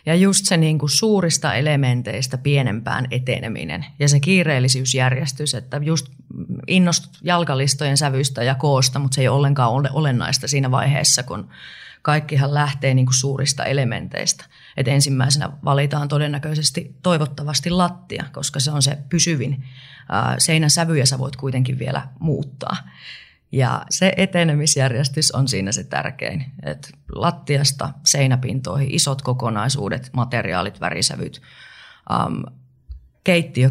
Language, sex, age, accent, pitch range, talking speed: Finnish, female, 30-49, native, 130-150 Hz, 120 wpm